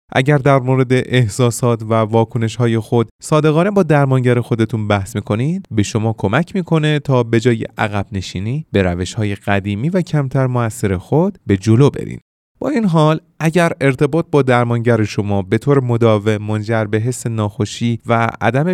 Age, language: 30-49, Persian